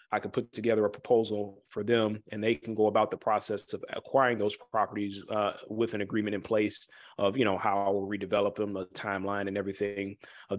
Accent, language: American, English